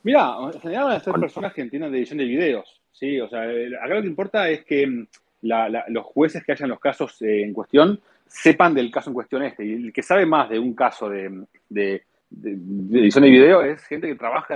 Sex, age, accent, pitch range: male, 30-49, Argentinian, 115-170 Hz